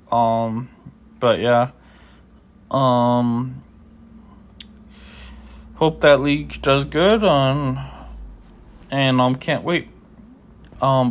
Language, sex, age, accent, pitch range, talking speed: English, male, 20-39, American, 110-135 Hz, 80 wpm